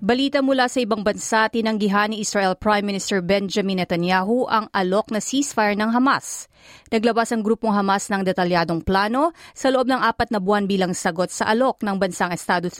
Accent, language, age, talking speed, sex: native, Filipino, 30-49, 180 wpm, female